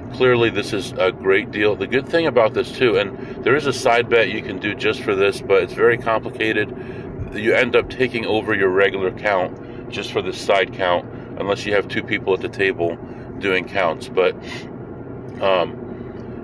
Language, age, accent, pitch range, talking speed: English, 40-59, American, 100-120 Hz, 195 wpm